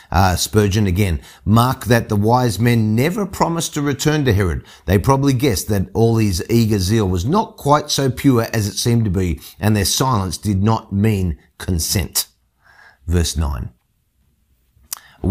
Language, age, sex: English, 50-69, male